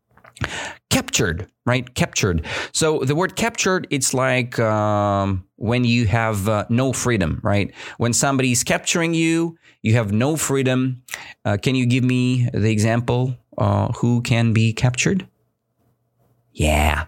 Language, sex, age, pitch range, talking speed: English, male, 30-49, 95-130 Hz, 135 wpm